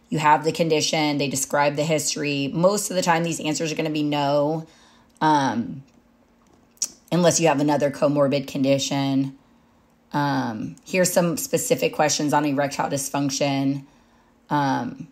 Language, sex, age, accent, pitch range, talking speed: English, female, 20-39, American, 145-180 Hz, 140 wpm